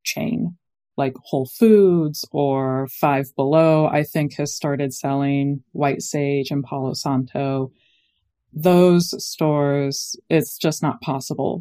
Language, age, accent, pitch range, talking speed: English, 20-39, American, 135-160 Hz, 120 wpm